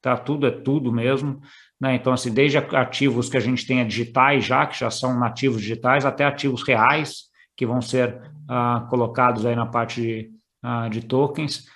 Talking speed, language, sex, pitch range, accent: 185 wpm, Portuguese, male, 125-150 Hz, Brazilian